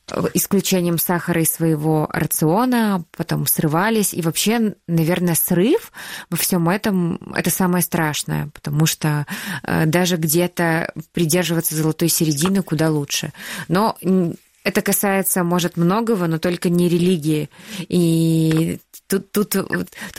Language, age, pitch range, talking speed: Russian, 20-39, 165-195 Hz, 115 wpm